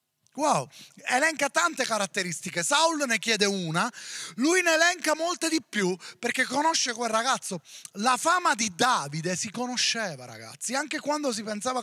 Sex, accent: male, native